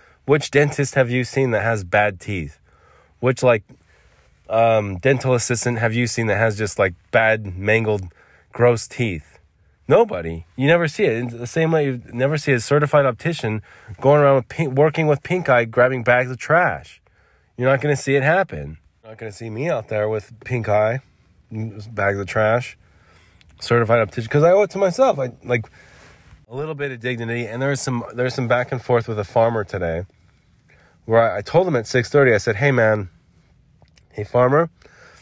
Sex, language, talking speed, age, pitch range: male, English, 190 wpm, 20-39, 95-125 Hz